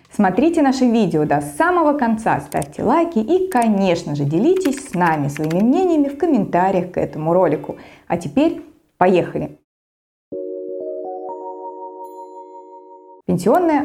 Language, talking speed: Russian, 110 wpm